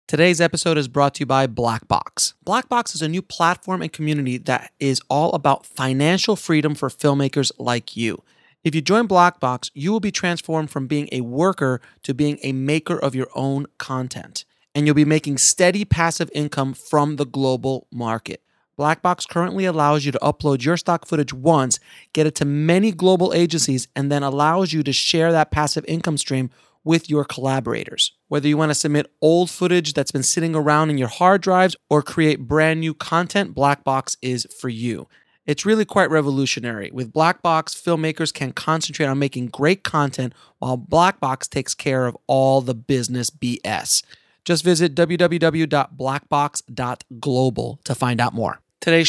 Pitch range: 135-165 Hz